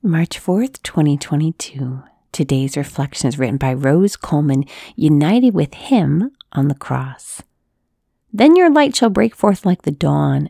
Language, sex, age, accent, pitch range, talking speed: English, female, 40-59, American, 145-210 Hz, 145 wpm